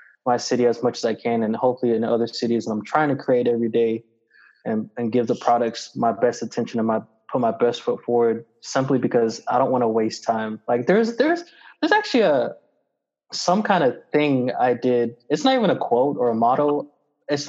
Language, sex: English, male